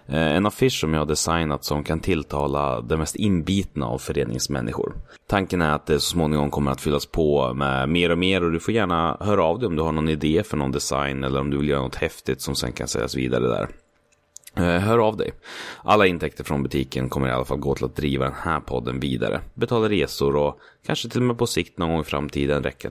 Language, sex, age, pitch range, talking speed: Swedish, male, 30-49, 70-85 Hz, 235 wpm